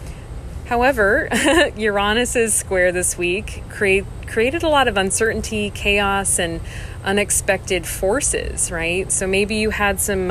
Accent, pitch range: American, 165-200 Hz